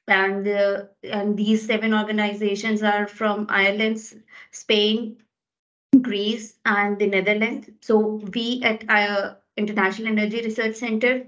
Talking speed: 115 wpm